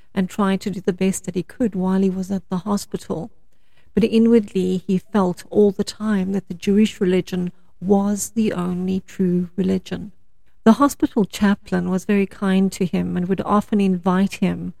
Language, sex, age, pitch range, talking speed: English, female, 40-59, 185-215 Hz, 180 wpm